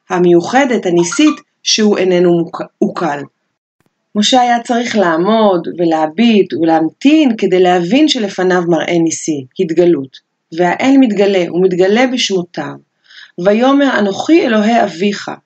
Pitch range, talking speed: 185-250 Hz, 95 wpm